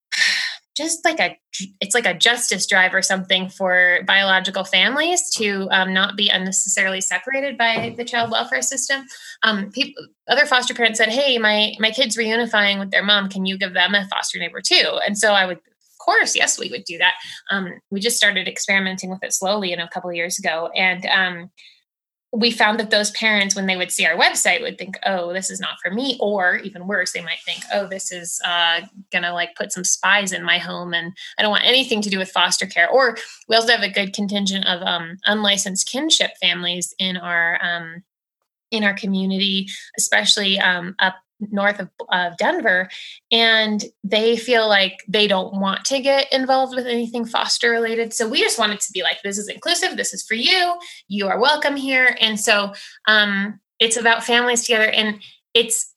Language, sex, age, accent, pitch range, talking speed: English, female, 20-39, American, 190-235 Hz, 200 wpm